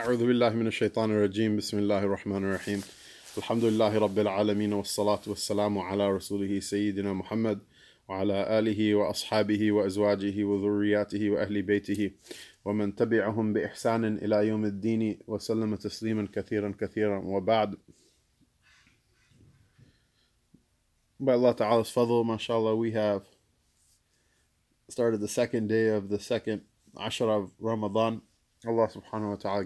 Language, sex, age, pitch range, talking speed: English, male, 20-39, 100-110 Hz, 110 wpm